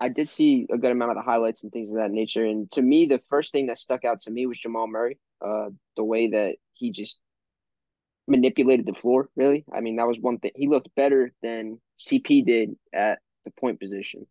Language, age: English, 10-29